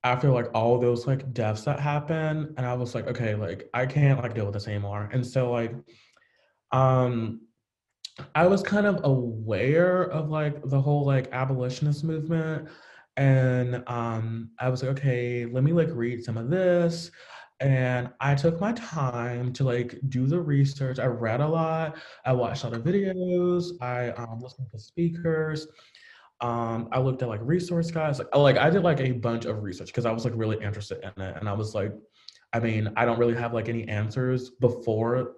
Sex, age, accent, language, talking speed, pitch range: male, 20-39, American, English, 195 wpm, 115-140 Hz